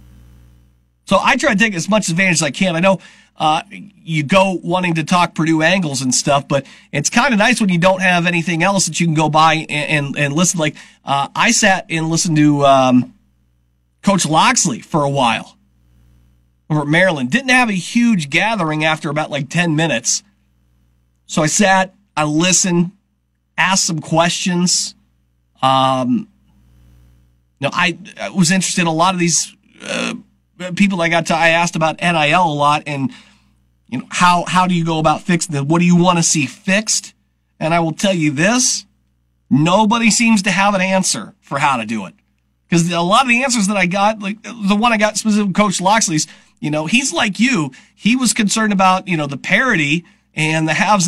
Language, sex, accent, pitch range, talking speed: English, male, American, 140-195 Hz, 200 wpm